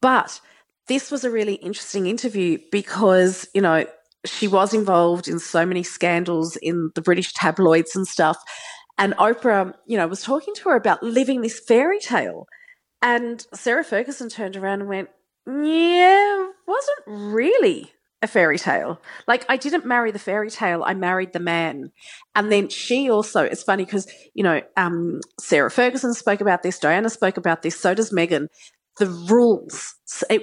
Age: 40-59